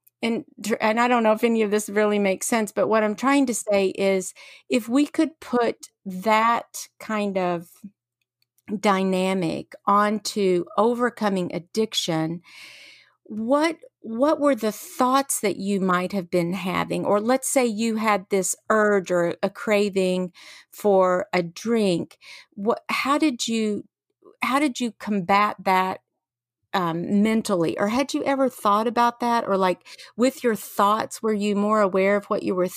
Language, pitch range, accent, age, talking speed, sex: English, 185-230 Hz, American, 50-69, 155 wpm, female